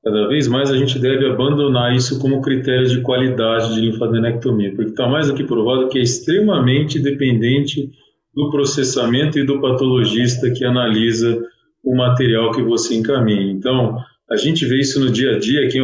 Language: Portuguese